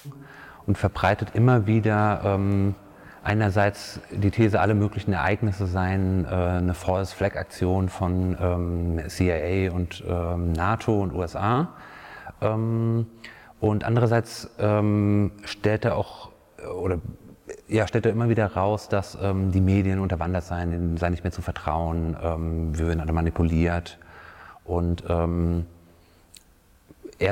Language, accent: German, German